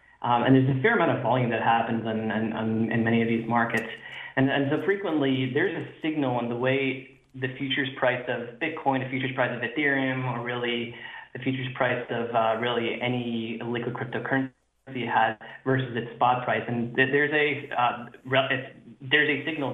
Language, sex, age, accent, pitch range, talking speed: English, male, 20-39, American, 115-135 Hz, 185 wpm